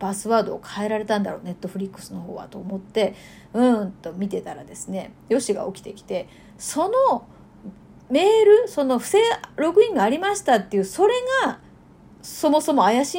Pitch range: 205-295 Hz